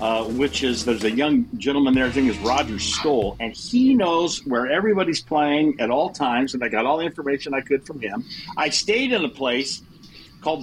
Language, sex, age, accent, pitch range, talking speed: English, male, 50-69, American, 105-150 Hz, 215 wpm